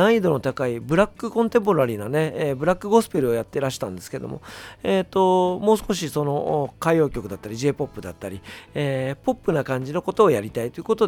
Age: 40-59